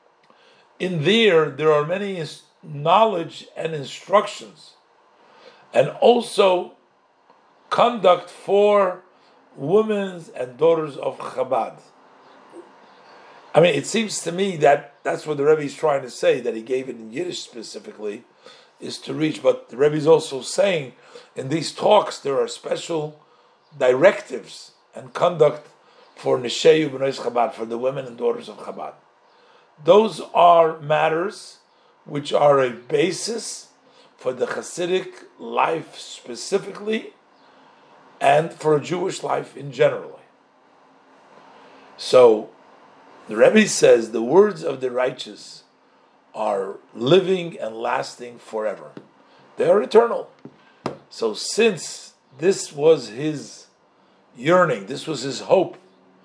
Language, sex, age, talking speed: English, male, 50-69, 120 wpm